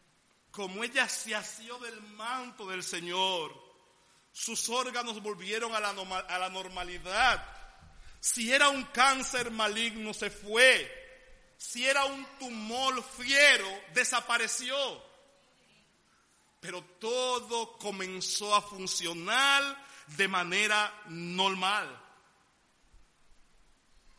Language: Spanish